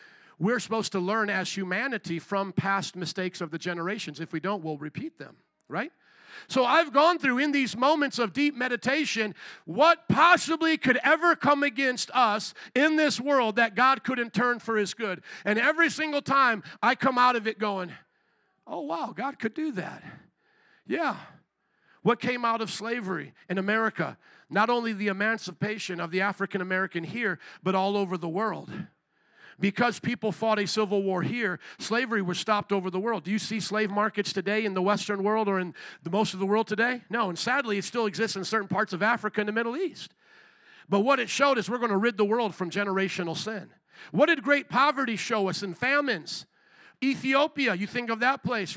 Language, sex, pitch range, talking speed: English, male, 200-255 Hz, 195 wpm